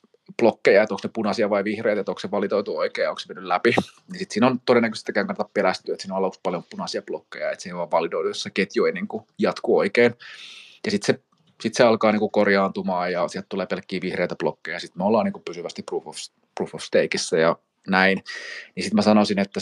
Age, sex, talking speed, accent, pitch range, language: 30-49, male, 230 wpm, native, 95-120 Hz, Finnish